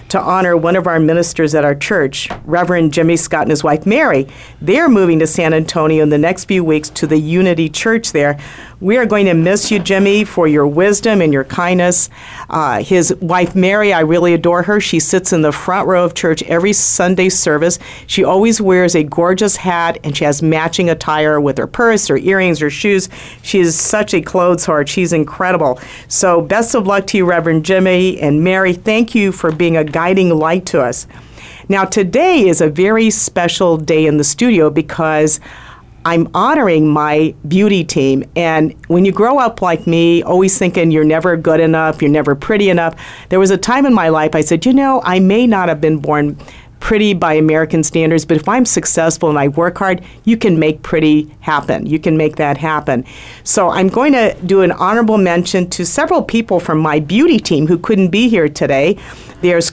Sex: female